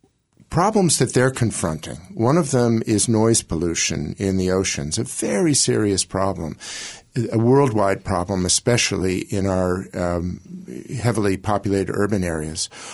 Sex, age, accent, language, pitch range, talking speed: male, 50-69, American, English, 95-120 Hz, 130 wpm